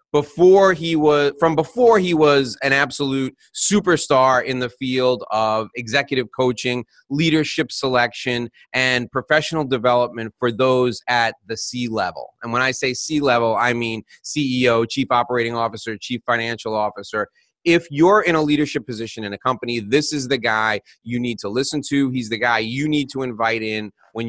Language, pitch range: English, 115-145 Hz